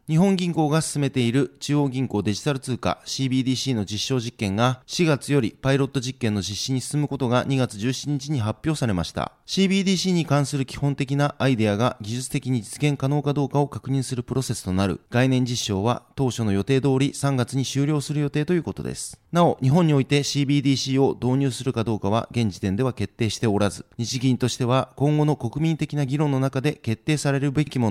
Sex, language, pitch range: male, Japanese, 120-145 Hz